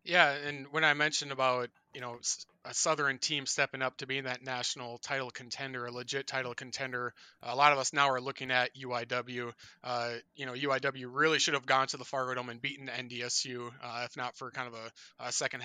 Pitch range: 125-140 Hz